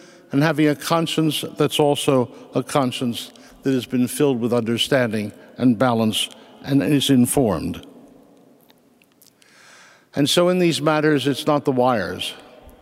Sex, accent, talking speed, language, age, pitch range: male, American, 130 wpm, English, 60-79, 135-180 Hz